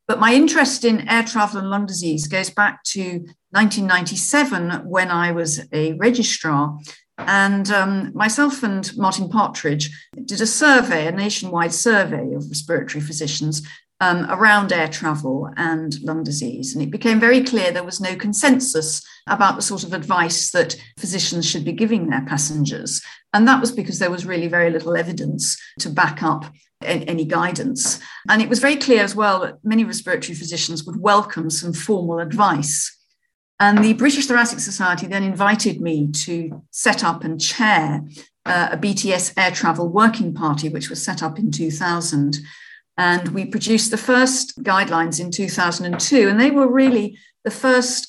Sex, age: female, 50-69